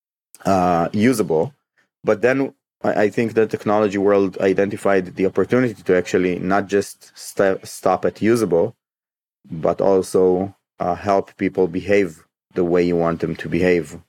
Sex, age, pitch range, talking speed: male, 30-49, 85-100 Hz, 140 wpm